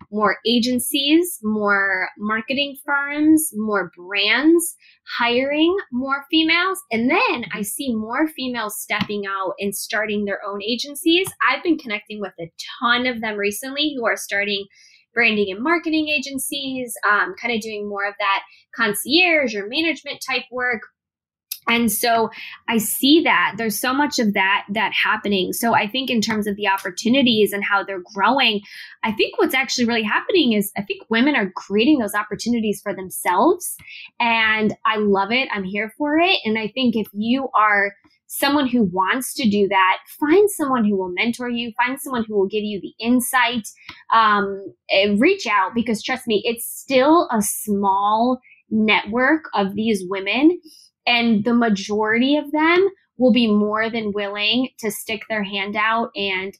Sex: female